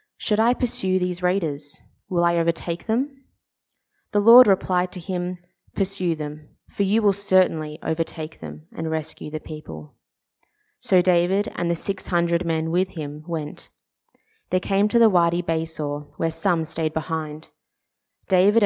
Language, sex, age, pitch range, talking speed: English, female, 20-39, 160-190 Hz, 150 wpm